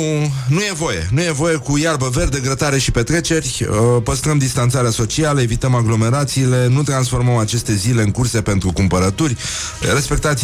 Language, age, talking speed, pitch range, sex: Romanian, 30-49, 150 wpm, 100-130 Hz, male